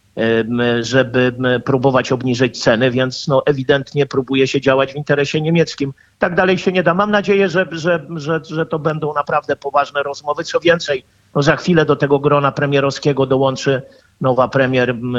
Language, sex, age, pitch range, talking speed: Polish, male, 50-69, 125-155 Hz, 160 wpm